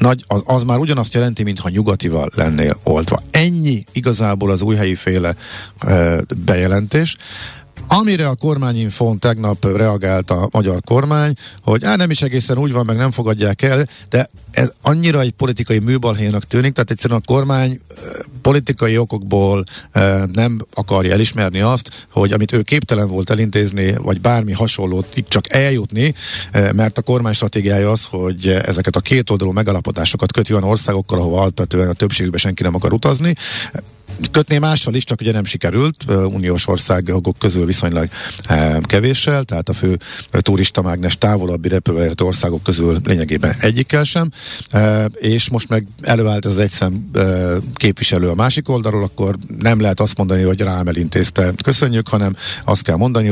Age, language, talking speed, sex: 50-69, Hungarian, 160 wpm, male